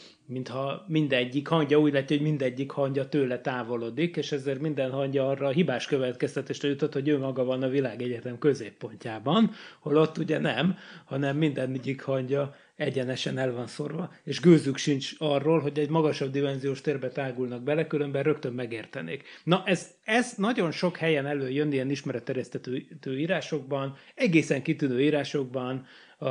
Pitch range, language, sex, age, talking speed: 135-160 Hz, Hungarian, male, 30-49, 145 wpm